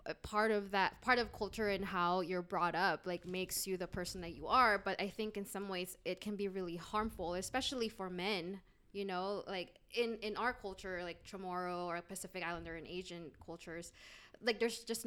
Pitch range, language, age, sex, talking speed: 170-210 Hz, English, 20-39, female, 205 wpm